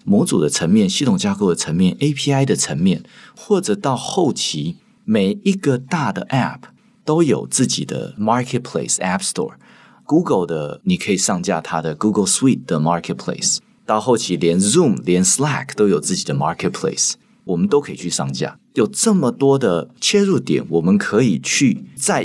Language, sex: Chinese, male